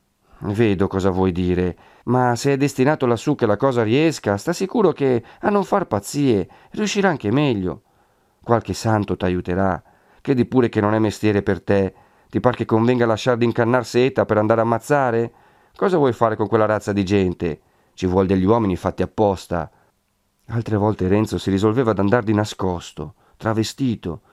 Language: Italian